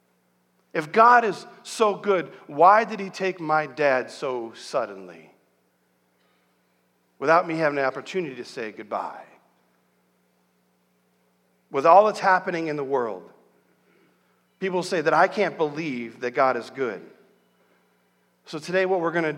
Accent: American